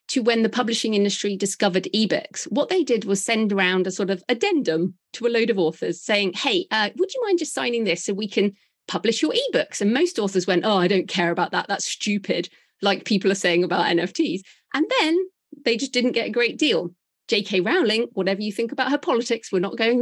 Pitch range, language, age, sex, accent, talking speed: 190-240 Hz, English, 40-59, female, British, 225 wpm